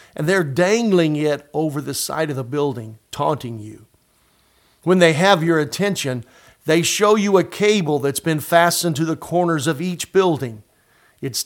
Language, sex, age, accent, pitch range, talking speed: English, male, 50-69, American, 140-175 Hz, 170 wpm